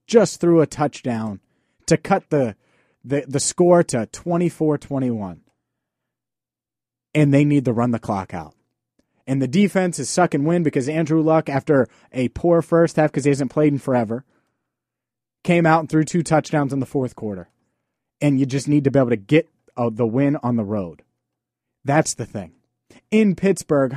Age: 30-49